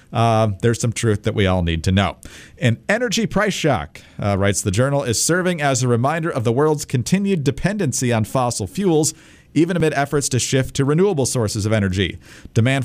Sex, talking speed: male, 195 wpm